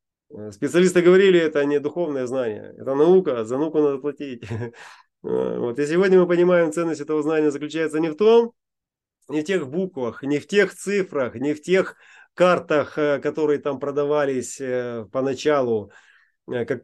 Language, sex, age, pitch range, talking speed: Russian, male, 30-49, 145-185 Hz, 150 wpm